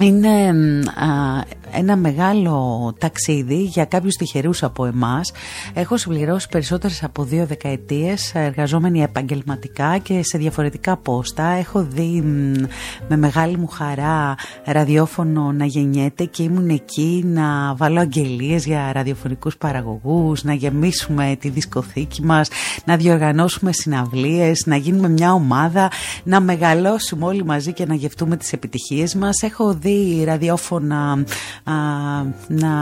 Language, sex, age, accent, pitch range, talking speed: Greek, female, 30-49, native, 150-185 Hz, 115 wpm